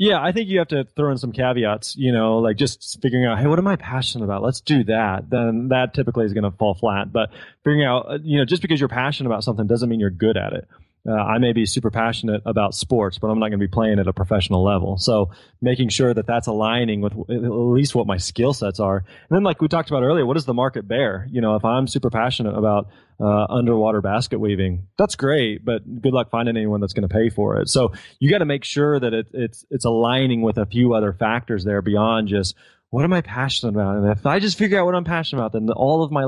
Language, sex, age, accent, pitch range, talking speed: English, male, 20-39, American, 110-135 Hz, 260 wpm